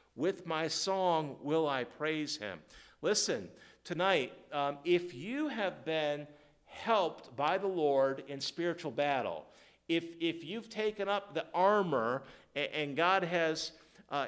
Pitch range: 155-200 Hz